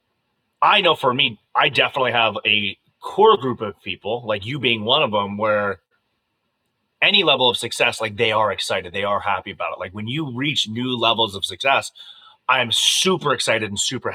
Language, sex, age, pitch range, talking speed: English, male, 30-49, 115-155 Hz, 190 wpm